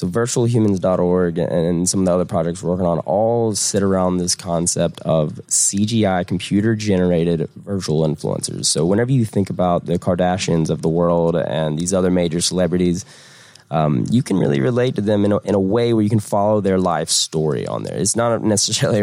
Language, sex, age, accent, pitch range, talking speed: English, male, 20-39, American, 90-115 Hz, 185 wpm